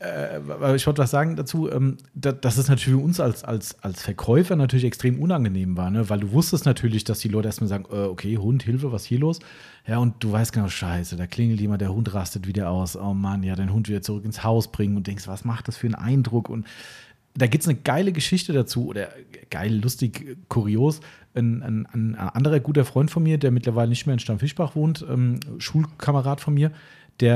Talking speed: 215 wpm